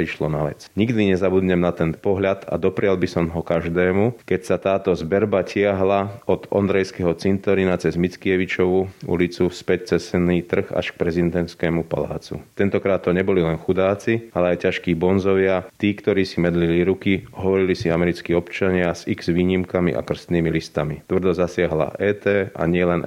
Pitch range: 85-95 Hz